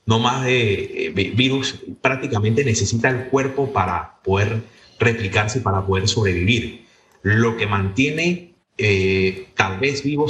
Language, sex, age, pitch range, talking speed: Spanish, male, 30-49, 105-135 Hz, 120 wpm